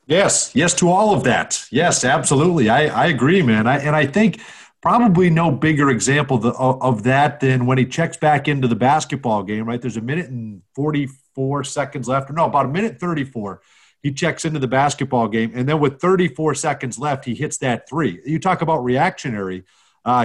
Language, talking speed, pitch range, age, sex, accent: English, 195 wpm, 130-170 Hz, 40-59, male, American